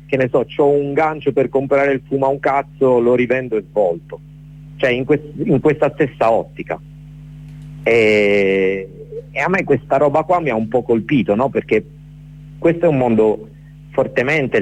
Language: Italian